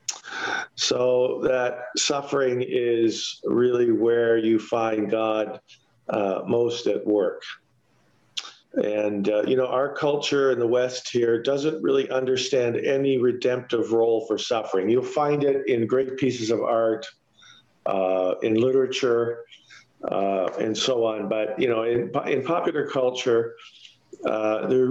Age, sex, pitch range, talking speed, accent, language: 50-69, male, 115-150 Hz, 130 wpm, American, English